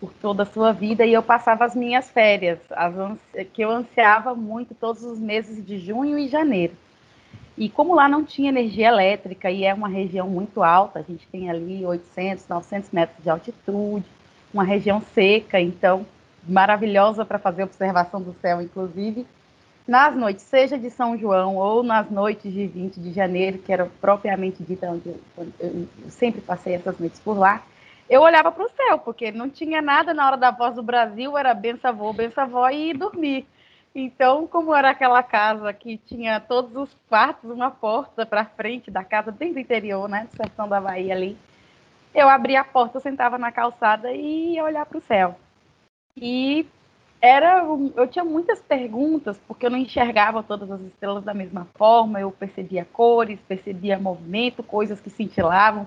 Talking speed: 175 wpm